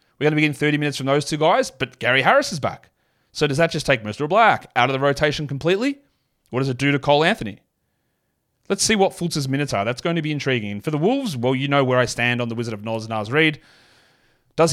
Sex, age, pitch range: male, 30-49, 120-155 Hz